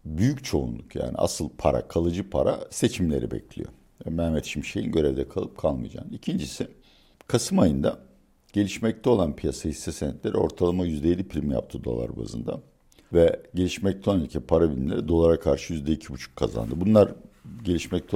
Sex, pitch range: male, 75-95 Hz